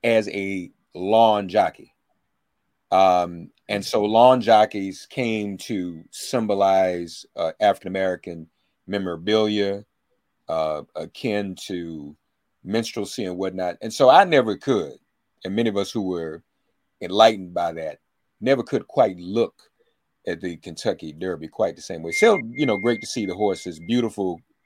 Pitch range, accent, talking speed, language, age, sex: 95-135 Hz, American, 135 wpm, English, 40-59, male